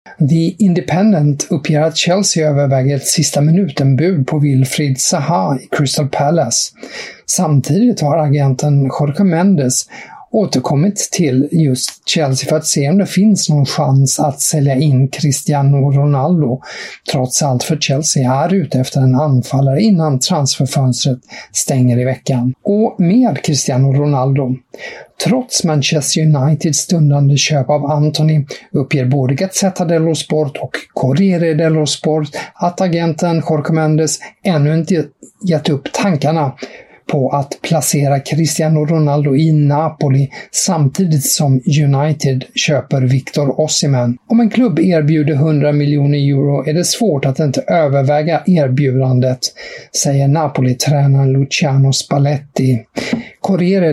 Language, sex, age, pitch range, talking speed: English, male, 50-69, 140-165 Hz, 125 wpm